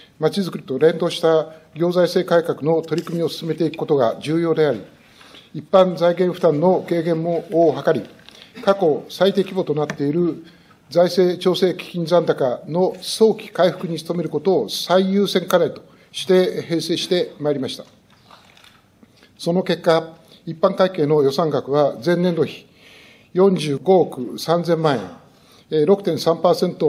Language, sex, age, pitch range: Japanese, male, 60-79, 155-185 Hz